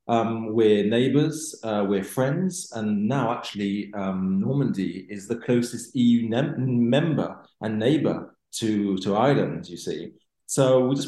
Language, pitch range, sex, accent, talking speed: English, 110-135 Hz, male, British, 135 wpm